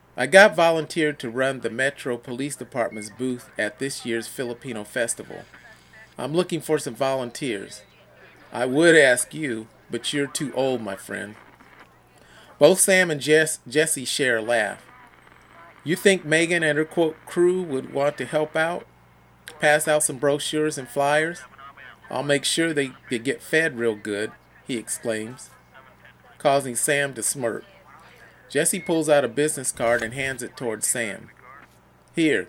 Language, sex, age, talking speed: English, male, 40-59, 155 wpm